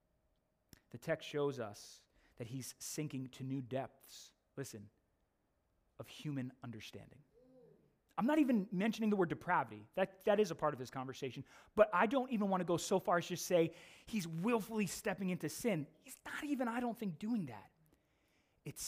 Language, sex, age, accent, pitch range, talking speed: English, male, 20-39, American, 125-190 Hz, 175 wpm